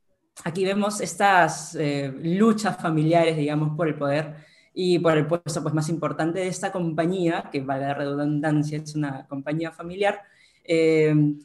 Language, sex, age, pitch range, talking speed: Spanish, female, 20-39, 155-190 Hz, 150 wpm